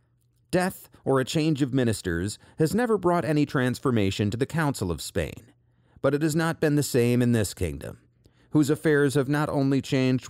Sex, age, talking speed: male, 40-59, 185 wpm